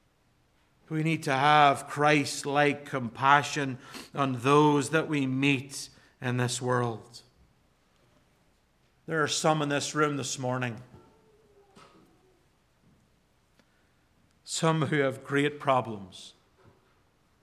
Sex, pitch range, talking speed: male, 125-160 Hz, 95 wpm